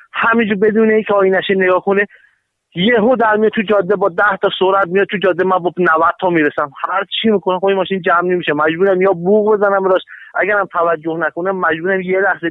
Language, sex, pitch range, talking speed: Persian, male, 165-200 Hz, 225 wpm